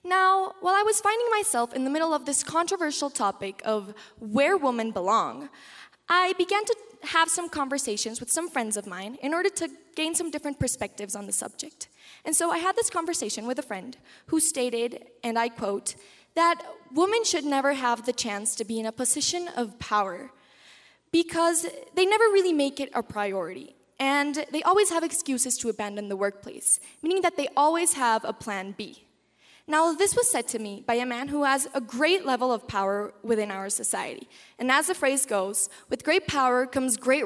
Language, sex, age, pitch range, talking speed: English, female, 10-29, 225-330 Hz, 195 wpm